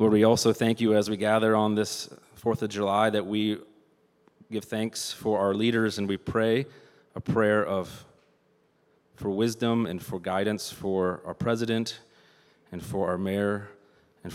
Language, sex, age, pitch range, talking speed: English, male, 30-49, 100-110 Hz, 165 wpm